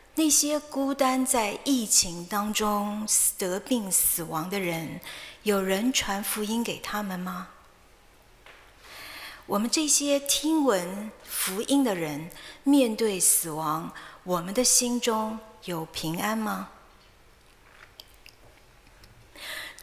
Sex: female